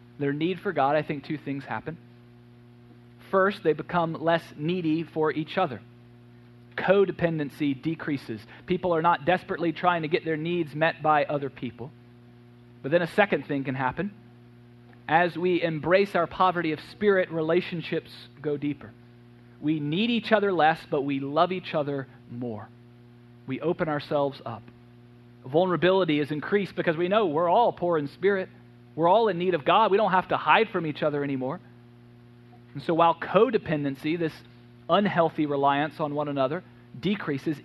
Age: 40-59